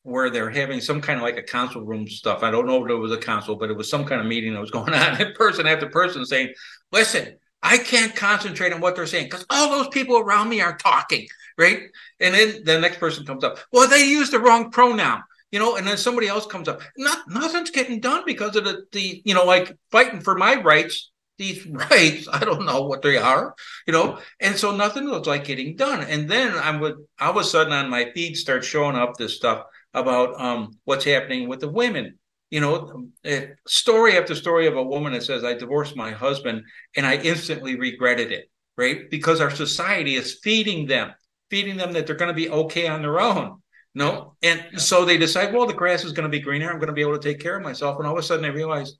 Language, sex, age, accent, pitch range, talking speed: English, male, 60-79, American, 140-200 Hz, 240 wpm